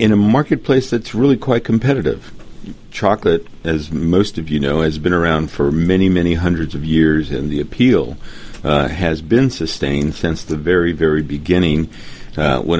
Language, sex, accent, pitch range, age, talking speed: English, male, American, 80-105 Hz, 50-69, 170 wpm